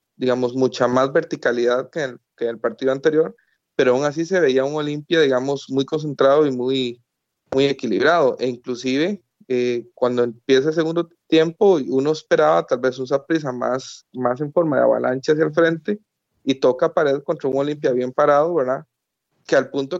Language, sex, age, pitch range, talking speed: Spanish, male, 30-49, 130-165 Hz, 185 wpm